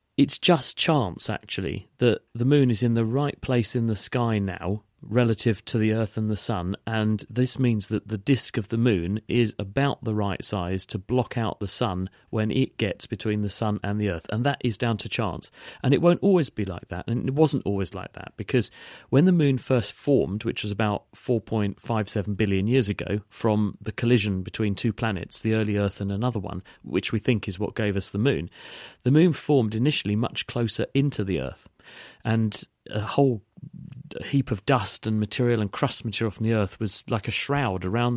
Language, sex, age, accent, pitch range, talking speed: English, male, 40-59, British, 100-120 Hz, 210 wpm